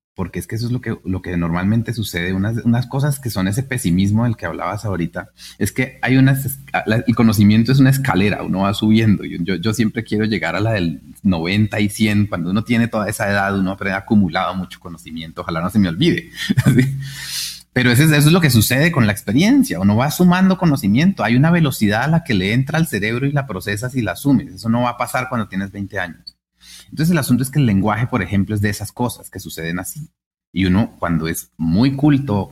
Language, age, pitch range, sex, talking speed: Spanish, 30-49, 95-130 Hz, male, 230 wpm